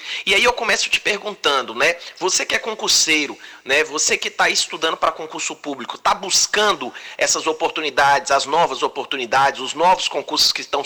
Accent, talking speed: Brazilian, 170 wpm